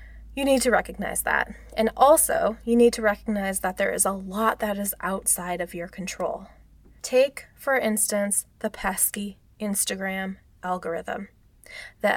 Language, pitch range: English, 190-235 Hz